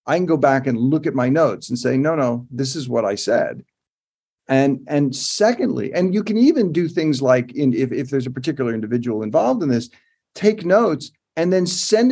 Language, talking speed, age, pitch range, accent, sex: English, 215 wpm, 50-69, 130-180 Hz, American, male